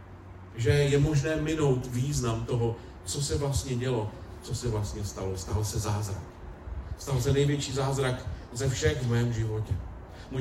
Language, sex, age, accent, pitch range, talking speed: Czech, male, 40-59, native, 110-145 Hz, 155 wpm